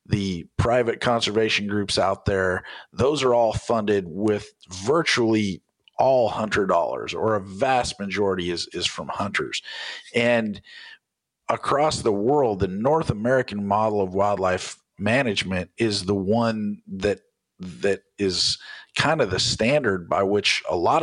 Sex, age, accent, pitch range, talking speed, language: male, 50-69, American, 100-125 Hz, 135 wpm, English